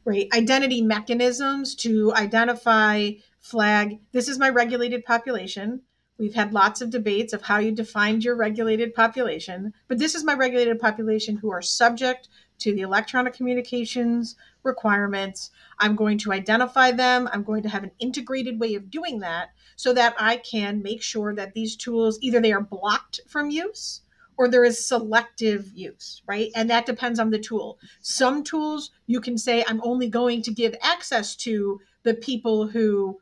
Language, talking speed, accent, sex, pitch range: English, 170 wpm, American, female, 210-245 Hz